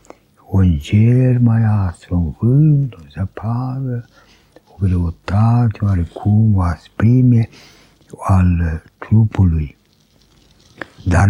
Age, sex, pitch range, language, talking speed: 60-79, male, 95-125 Hz, Romanian, 85 wpm